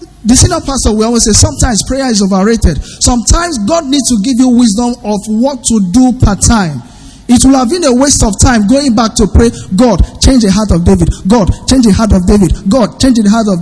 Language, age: English, 50-69